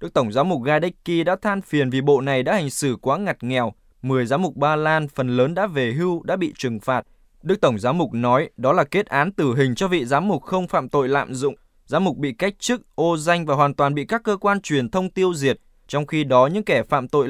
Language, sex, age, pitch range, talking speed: Vietnamese, male, 20-39, 130-175 Hz, 265 wpm